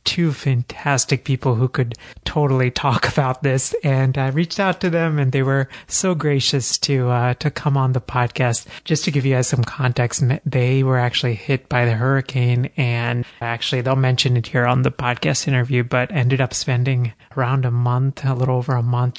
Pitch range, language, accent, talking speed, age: 120-140 Hz, English, American, 195 wpm, 30-49